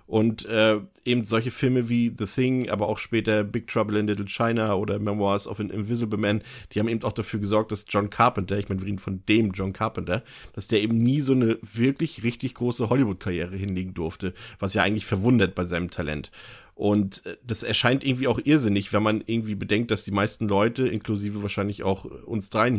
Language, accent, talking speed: German, German, 205 wpm